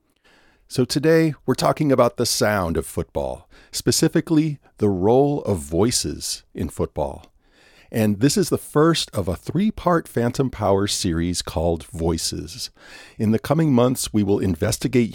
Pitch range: 85-120 Hz